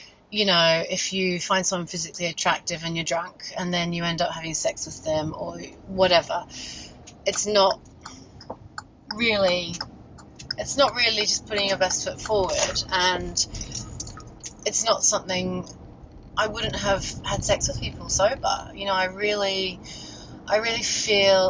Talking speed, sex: 150 wpm, female